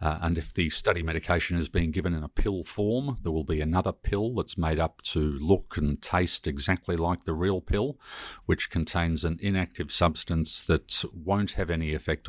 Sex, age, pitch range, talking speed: male, 50-69, 80-90 Hz, 195 wpm